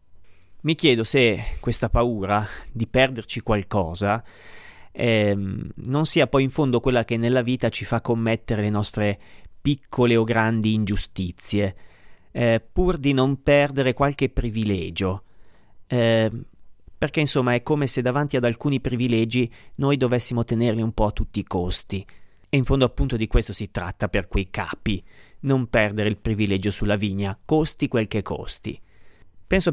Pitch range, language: 100-130 Hz, Italian